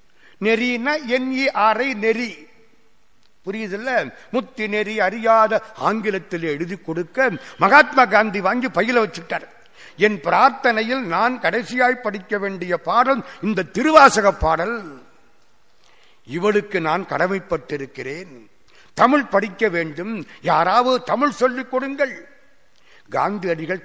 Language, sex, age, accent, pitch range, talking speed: Tamil, male, 60-79, native, 170-240 Hz, 80 wpm